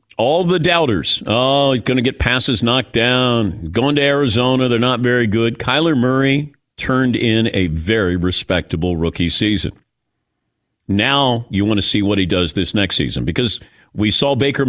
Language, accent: English, American